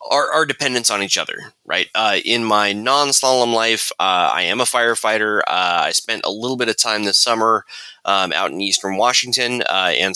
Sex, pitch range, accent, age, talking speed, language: male, 95-125 Hz, American, 20-39, 200 wpm, English